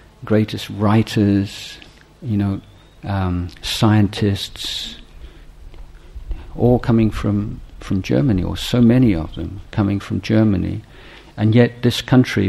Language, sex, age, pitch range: Thai, male, 50-69, 95-110 Hz